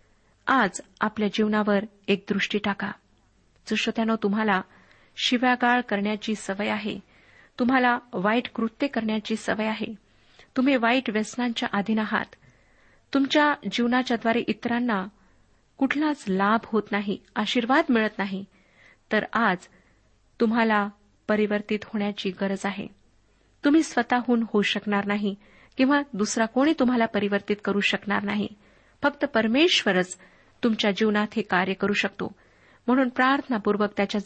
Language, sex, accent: Marathi, female, native